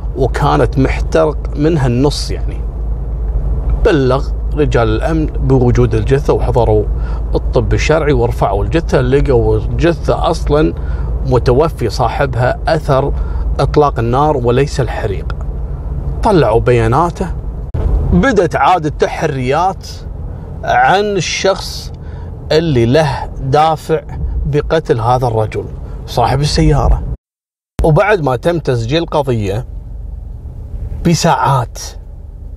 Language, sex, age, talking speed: Arabic, male, 40-59, 85 wpm